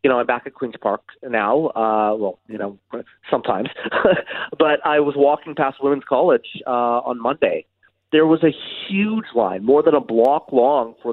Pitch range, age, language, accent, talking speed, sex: 115-140 Hz, 30-49, English, American, 185 wpm, male